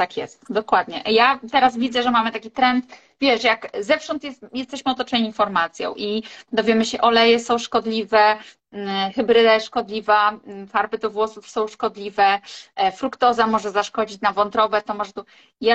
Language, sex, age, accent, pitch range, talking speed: Polish, female, 30-49, native, 215-255 Hz, 150 wpm